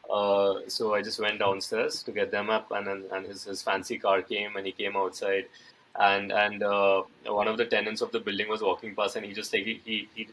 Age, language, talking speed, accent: 20-39, English, 230 wpm, Indian